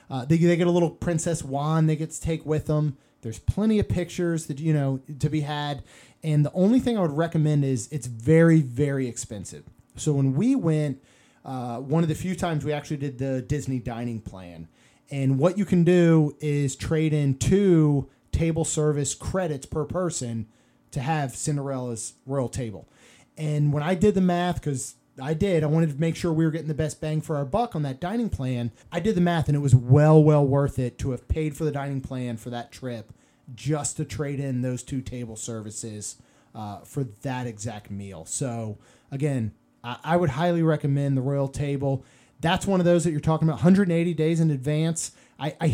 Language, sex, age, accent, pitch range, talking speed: English, male, 30-49, American, 130-165 Hz, 205 wpm